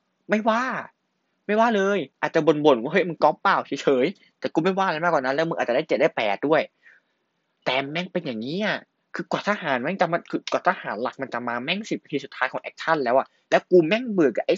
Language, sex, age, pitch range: Thai, male, 20-39, 120-180 Hz